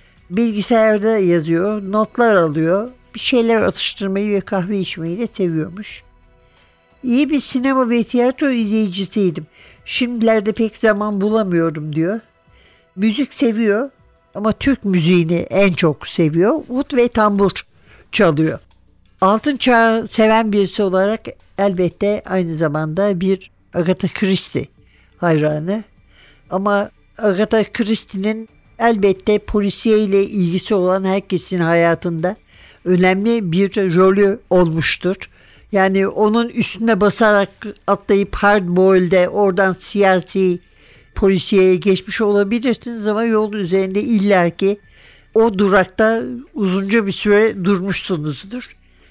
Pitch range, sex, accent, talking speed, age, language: 180-220 Hz, male, native, 100 wpm, 60-79, Turkish